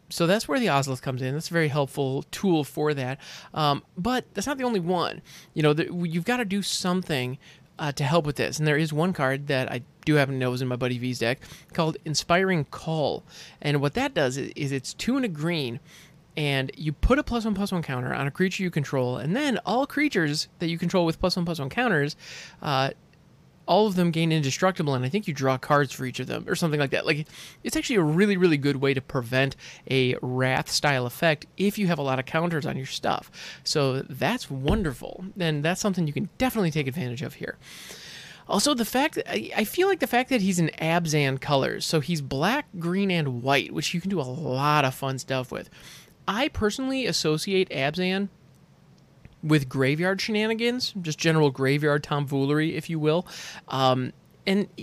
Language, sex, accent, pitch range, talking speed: English, male, American, 140-190 Hz, 210 wpm